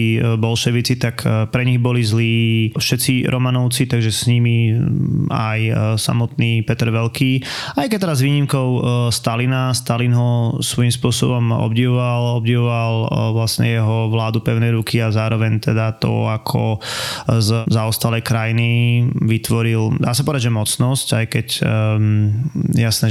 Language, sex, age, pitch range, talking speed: Slovak, male, 20-39, 110-125 Hz, 125 wpm